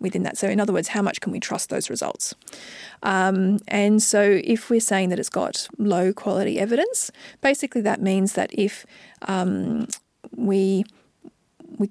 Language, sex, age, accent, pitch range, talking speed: English, female, 40-59, Australian, 195-240 Hz, 165 wpm